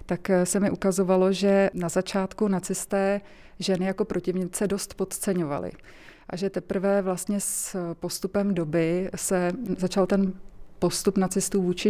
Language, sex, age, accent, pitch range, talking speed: Czech, female, 30-49, native, 175-190 Hz, 130 wpm